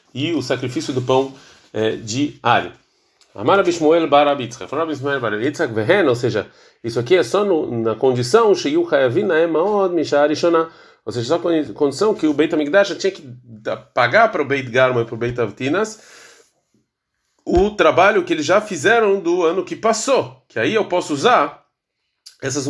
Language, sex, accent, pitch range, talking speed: Portuguese, male, Brazilian, 120-165 Hz, 160 wpm